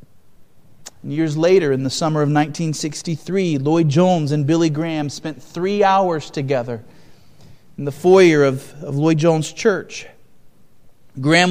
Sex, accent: male, American